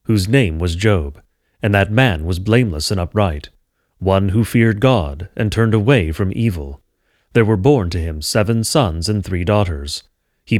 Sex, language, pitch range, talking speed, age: male, English, 85-115 Hz, 175 wpm, 30-49